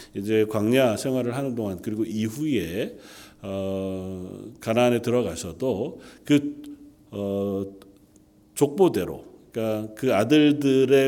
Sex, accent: male, native